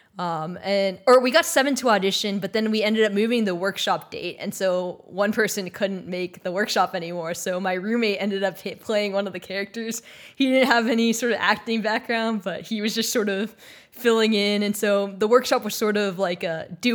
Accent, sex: American, female